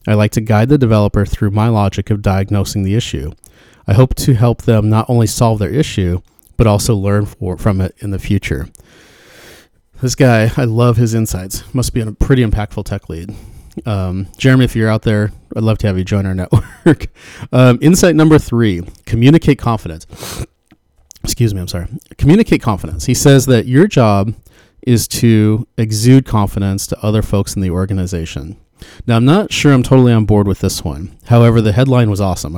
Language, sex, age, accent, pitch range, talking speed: English, male, 30-49, American, 95-120 Hz, 185 wpm